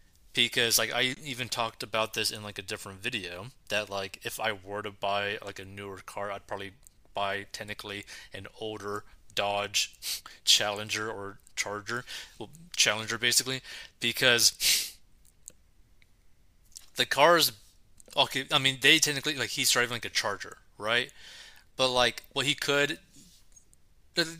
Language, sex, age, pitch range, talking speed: English, male, 30-49, 100-120 Hz, 140 wpm